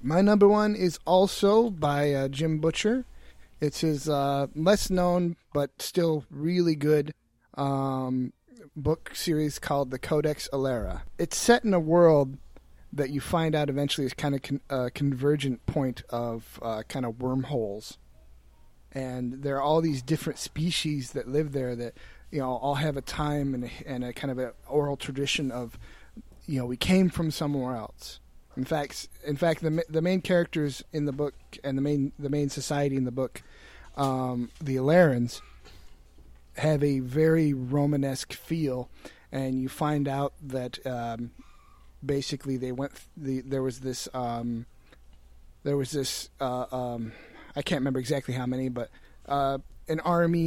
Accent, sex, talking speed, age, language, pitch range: American, male, 165 wpm, 30-49, English, 125-150 Hz